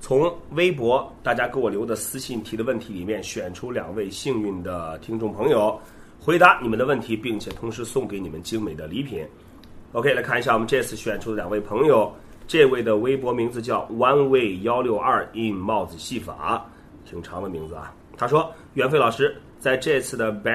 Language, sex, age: Chinese, male, 30-49